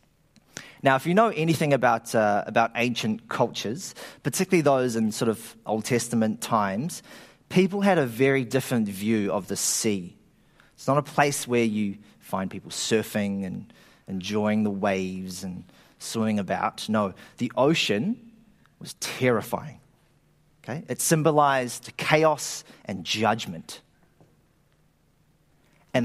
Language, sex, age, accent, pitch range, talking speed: English, male, 30-49, Australian, 115-155 Hz, 125 wpm